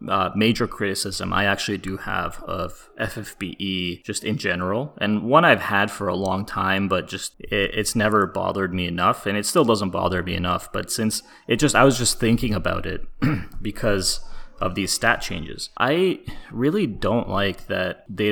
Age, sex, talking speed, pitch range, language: 20-39, male, 180 wpm, 95-110 Hz, English